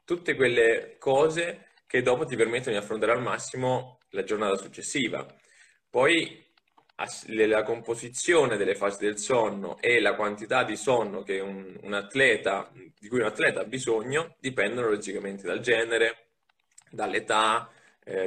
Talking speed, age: 140 wpm, 20-39